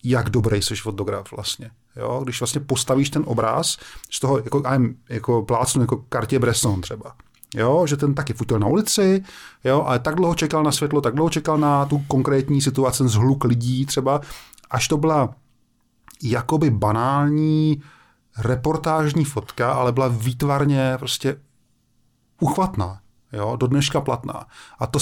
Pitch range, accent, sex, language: 115-145 Hz, native, male, Czech